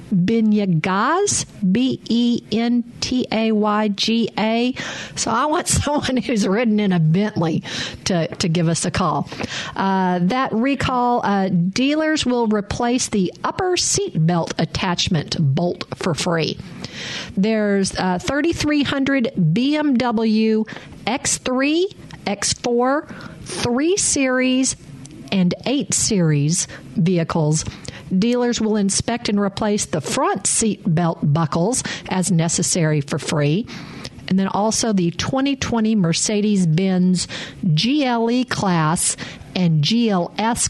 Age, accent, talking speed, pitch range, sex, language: 50-69, American, 100 wpm, 170-235 Hz, female, English